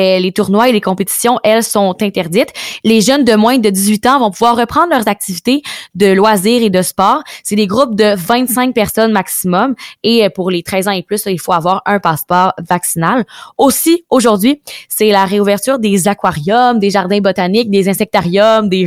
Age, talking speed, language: 20-39, 185 wpm, French